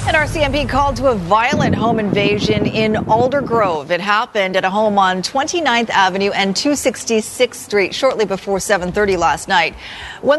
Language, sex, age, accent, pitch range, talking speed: English, female, 40-59, American, 190-240 Hz, 160 wpm